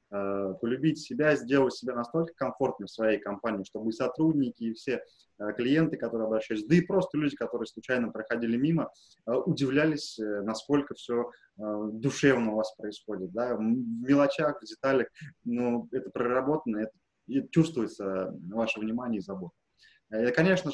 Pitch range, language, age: 110-140 Hz, Russian, 20-39